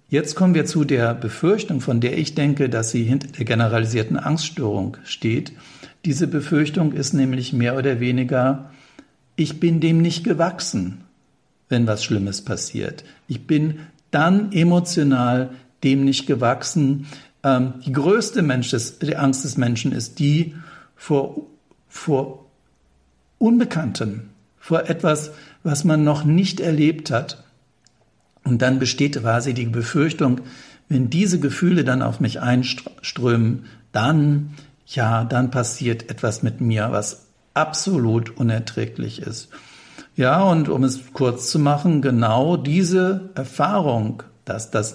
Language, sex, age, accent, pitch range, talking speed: German, male, 60-79, German, 120-155 Hz, 125 wpm